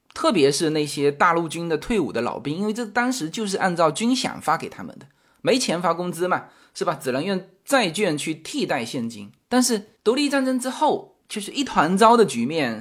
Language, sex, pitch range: Chinese, male, 155-225 Hz